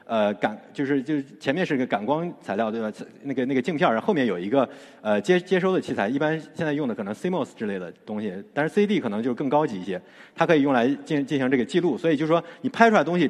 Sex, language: male, Chinese